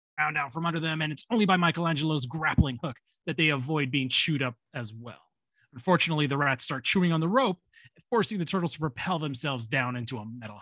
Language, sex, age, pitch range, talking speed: English, male, 30-49, 135-170 Hz, 215 wpm